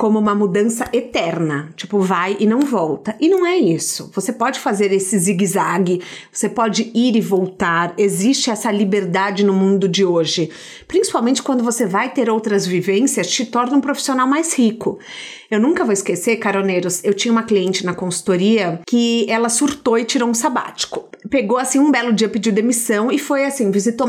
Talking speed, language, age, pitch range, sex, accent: 180 wpm, Portuguese, 40-59, 195-235 Hz, female, Brazilian